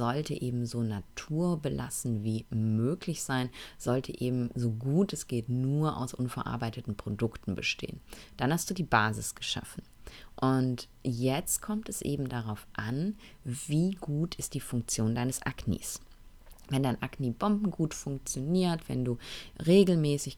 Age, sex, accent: 30-49, female, German